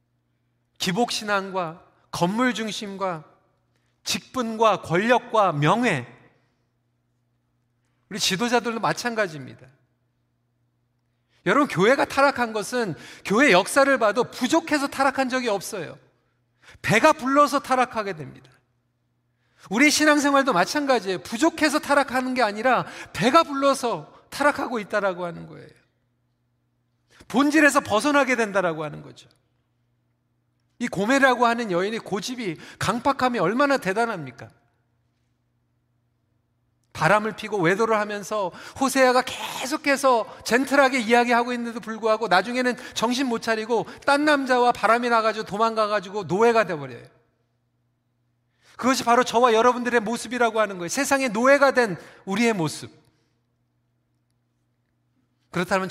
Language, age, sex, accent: Korean, 40-59, male, native